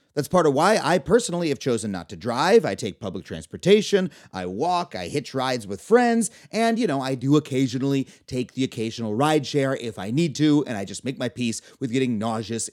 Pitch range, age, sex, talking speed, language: 130-200 Hz, 30-49, male, 210 wpm, English